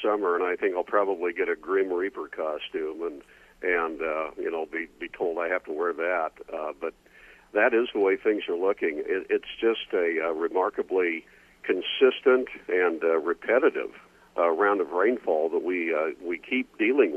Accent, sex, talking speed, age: American, male, 185 wpm, 50-69